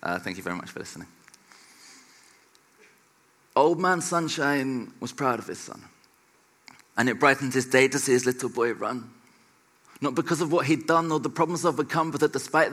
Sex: male